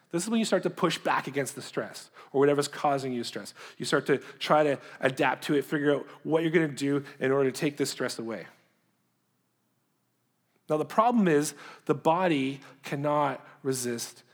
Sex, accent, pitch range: male, American, 135-160 Hz